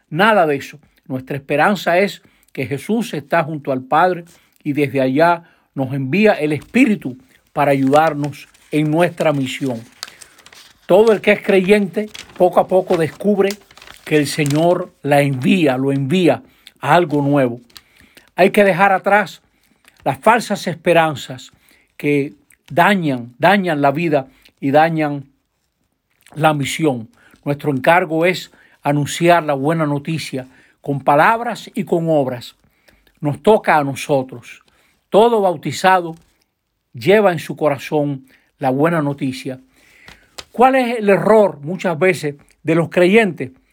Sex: male